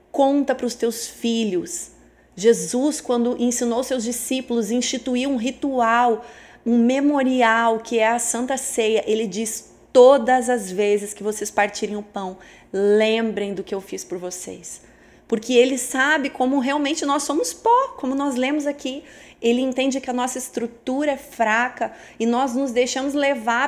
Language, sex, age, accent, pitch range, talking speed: Portuguese, female, 30-49, Brazilian, 210-255 Hz, 155 wpm